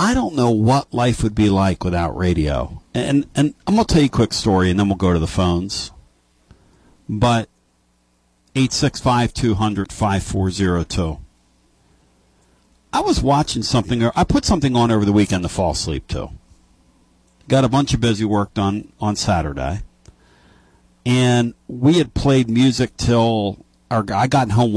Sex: male